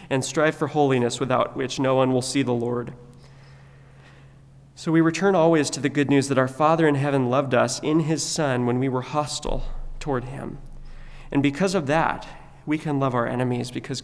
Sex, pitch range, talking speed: male, 125-140 Hz, 195 wpm